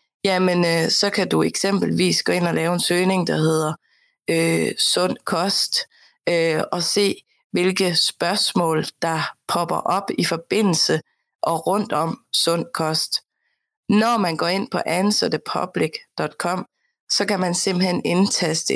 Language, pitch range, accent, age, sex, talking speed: Danish, 165-200 Hz, native, 20-39, female, 140 wpm